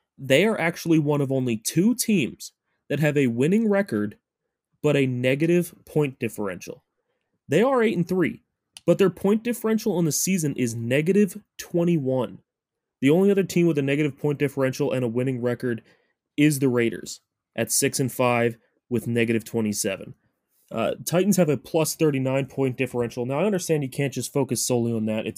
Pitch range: 120-165 Hz